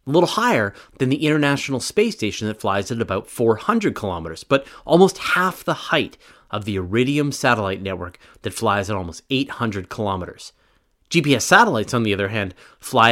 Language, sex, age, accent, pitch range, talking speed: English, male, 30-49, American, 100-140 Hz, 170 wpm